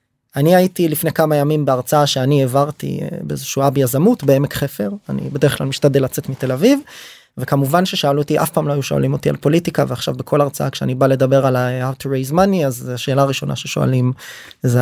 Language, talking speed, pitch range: Hebrew, 195 wpm, 130-160 Hz